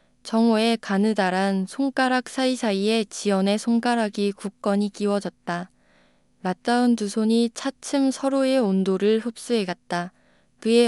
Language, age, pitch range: Korean, 20-39, 190-235 Hz